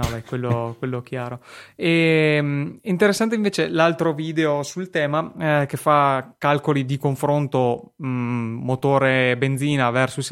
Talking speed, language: 115 wpm, Italian